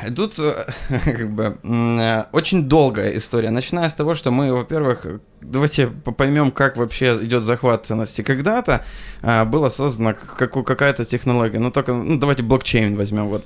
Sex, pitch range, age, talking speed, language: male, 120-145 Hz, 20-39, 160 wpm, Ukrainian